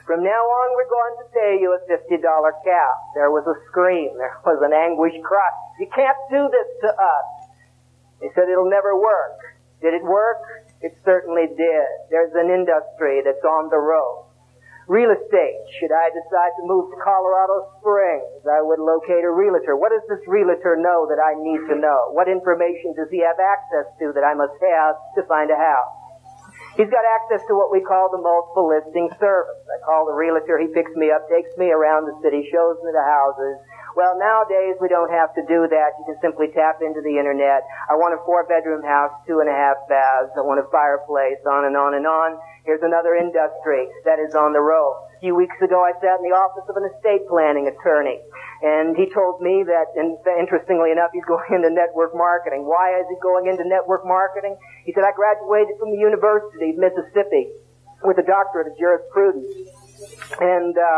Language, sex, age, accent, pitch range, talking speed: English, male, 50-69, American, 155-190 Hz, 195 wpm